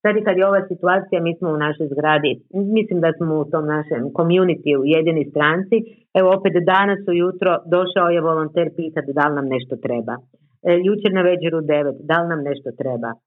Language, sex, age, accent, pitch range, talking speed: Croatian, female, 50-69, native, 160-205 Hz, 200 wpm